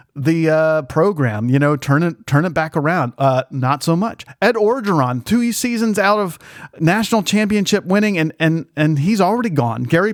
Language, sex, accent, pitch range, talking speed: English, male, American, 135-195 Hz, 185 wpm